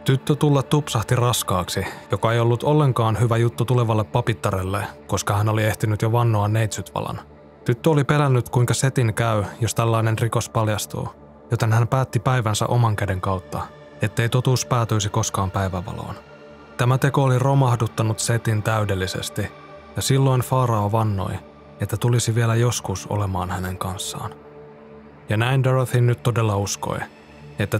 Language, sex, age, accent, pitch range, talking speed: Finnish, male, 20-39, native, 105-125 Hz, 140 wpm